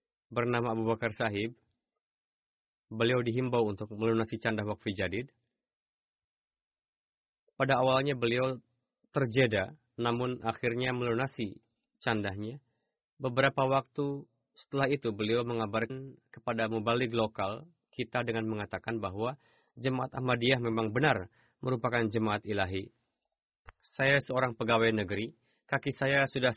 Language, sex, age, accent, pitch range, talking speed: Indonesian, male, 20-39, native, 115-135 Hz, 105 wpm